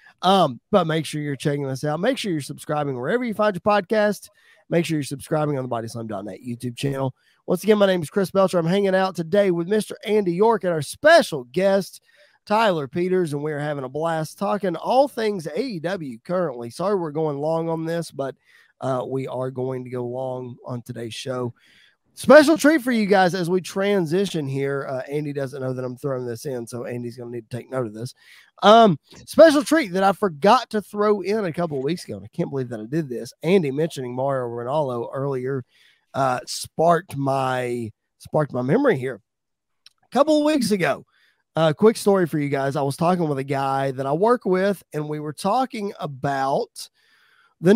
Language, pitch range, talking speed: English, 135-200 Hz, 205 wpm